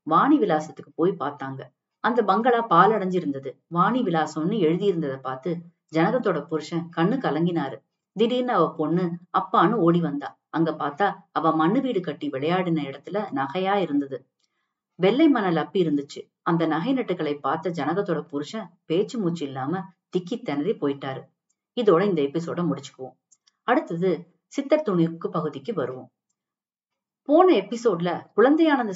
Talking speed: 120 wpm